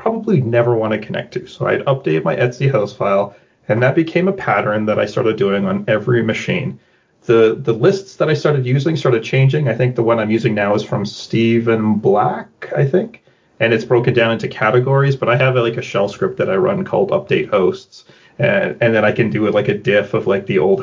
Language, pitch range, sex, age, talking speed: English, 115-145 Hz, male, 30-49, 235 wpm